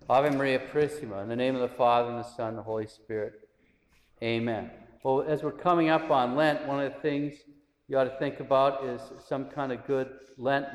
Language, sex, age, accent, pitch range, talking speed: English, male, 50-69, American, 115-140 Hz, 220 wpm